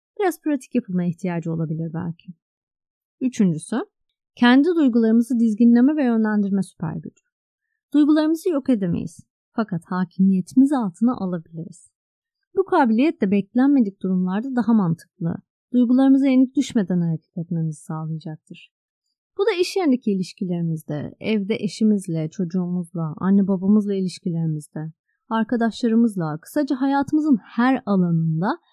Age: 30-49